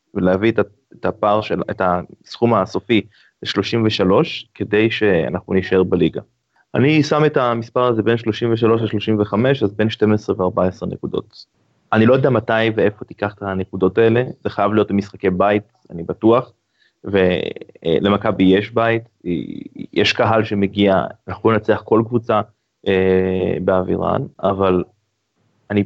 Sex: male